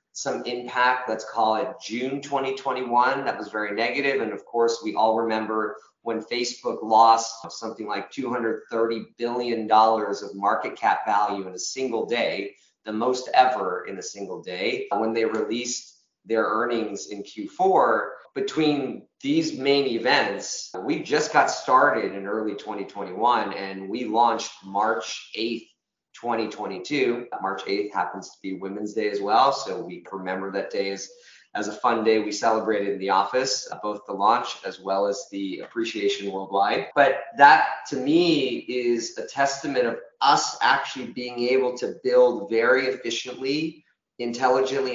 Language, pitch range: English, 110-135 Hz